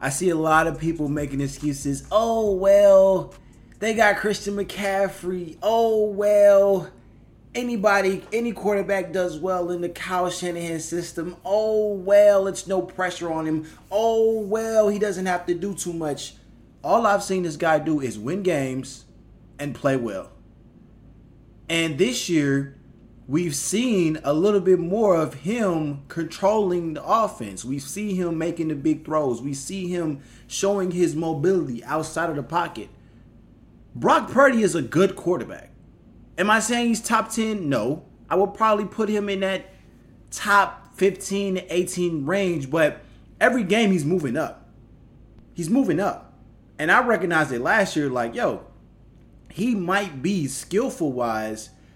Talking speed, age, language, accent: 150 wpm, 20-39, English, American